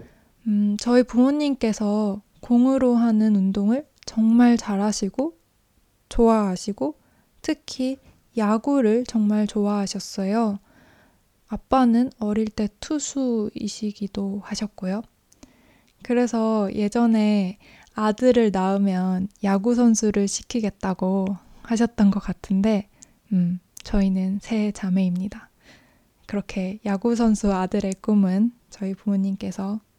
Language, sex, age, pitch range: Korean, female, 20-39, 200-235 Hz